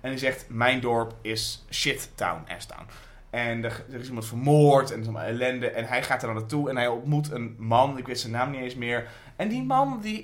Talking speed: 245 wpm